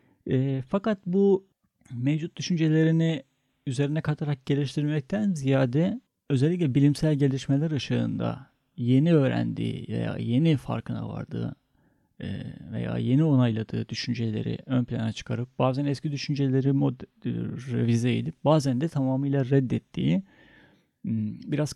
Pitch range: 130-155 Hz